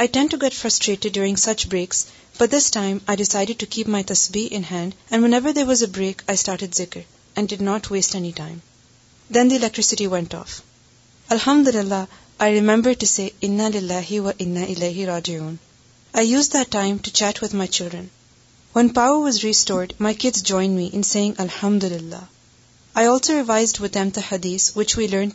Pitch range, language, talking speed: 180-225 Hz, Urdu, 180 wpm